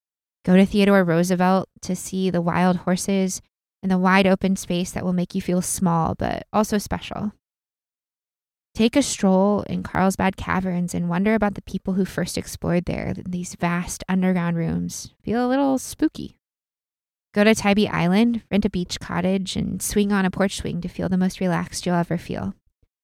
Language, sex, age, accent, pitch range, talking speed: English, female, 20-39, American, 175-205 Hz, 175 wpm